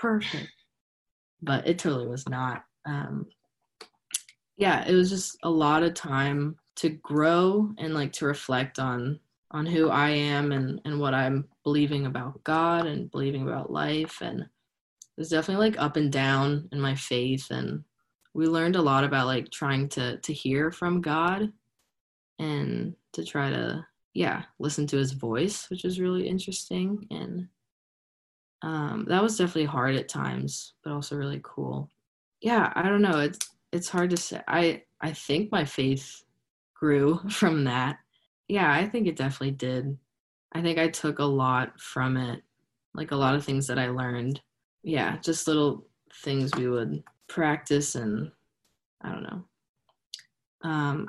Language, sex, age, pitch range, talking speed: English, female, 20-39, 135-165 Hz, 160 wpm